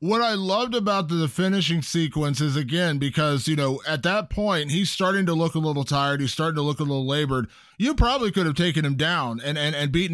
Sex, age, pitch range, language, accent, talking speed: male, 20-39, 155-200 Hz, English, American, 235 wpm